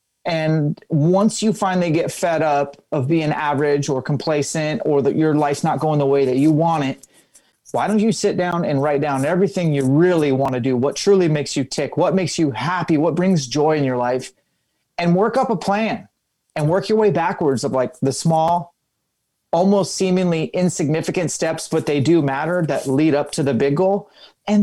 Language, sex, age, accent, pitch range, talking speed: English, male, 30-49, American, 140-175 Hz, 200 wpm